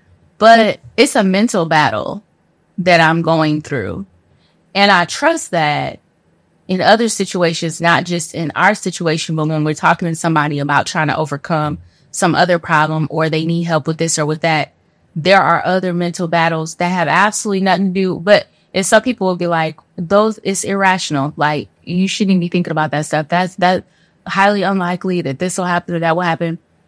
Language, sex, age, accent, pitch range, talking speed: English, female, 20-39, American, 150-185 Hz, 190 wpm